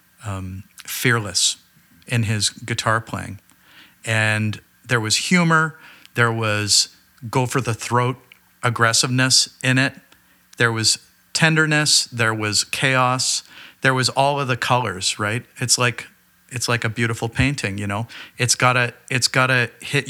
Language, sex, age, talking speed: English, male, 50-69, 135 wpm